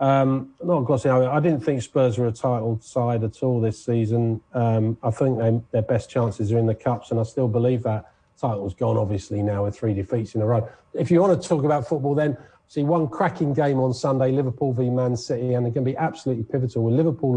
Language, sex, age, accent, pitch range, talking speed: English, male, 40-59, British, 105-135 Hz, 240 wpm